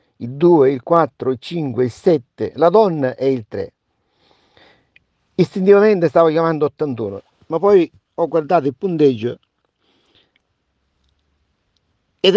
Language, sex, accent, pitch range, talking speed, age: Italian, male, native, 125-165 Hz, 115 wpm, 50-69